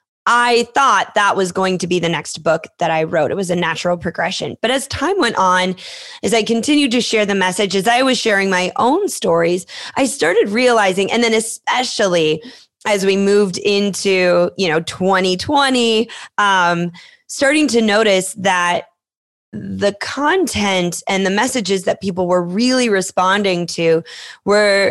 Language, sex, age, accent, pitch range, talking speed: English, female, 20-39, American, 190-240 Hz, 160 wpm